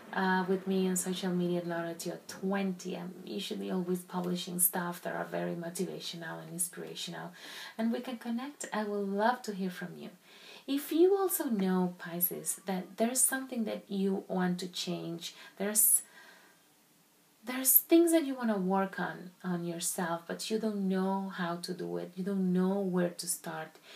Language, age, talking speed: English, 30-49, 180 wpm